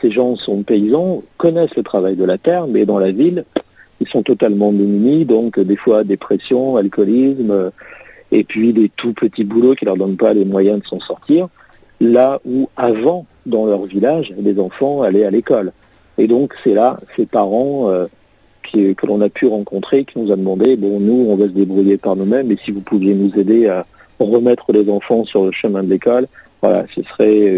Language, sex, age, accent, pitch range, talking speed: French, male, 50-69, French, 100-125 Hz, 200 wpm